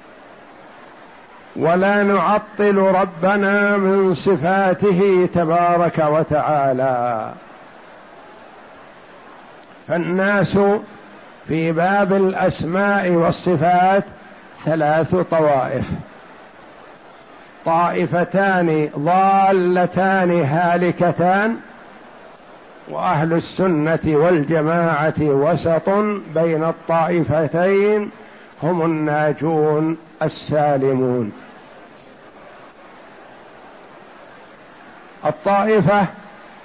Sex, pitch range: male, 160-195 Hz